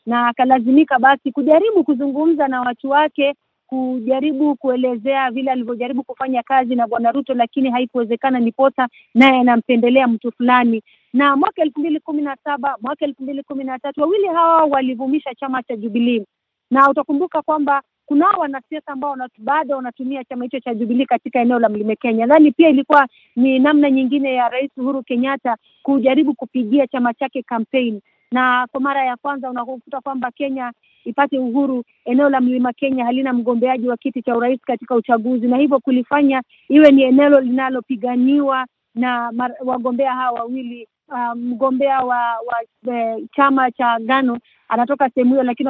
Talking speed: 145 wpm